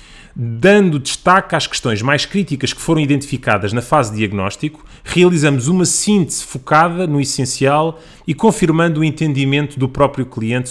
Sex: male